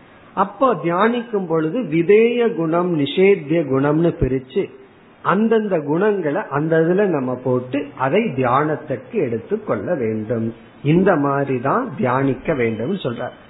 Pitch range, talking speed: 140-190 Hz, 60 wpm